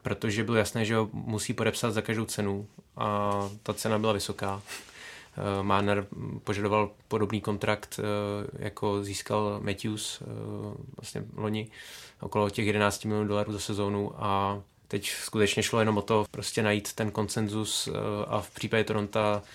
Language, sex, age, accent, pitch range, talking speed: Czech, male, 20-39, native, 105-110 Hz, 155 wpm